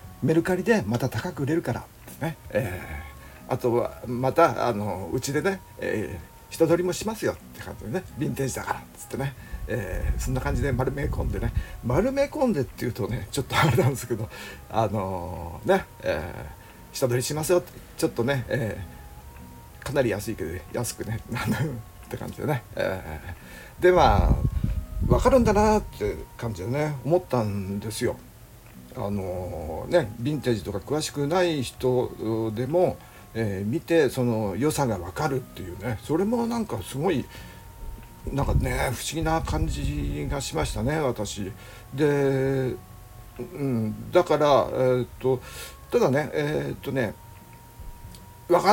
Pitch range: 100-150 Hz